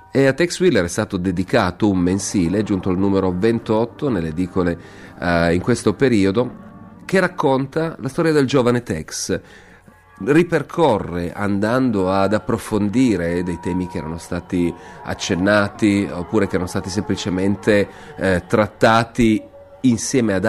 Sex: male